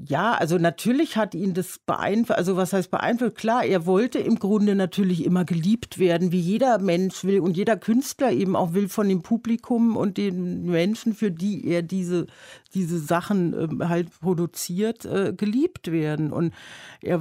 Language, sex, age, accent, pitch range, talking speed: German, female, 50-69, German, 175-215 Hz, 165 wpm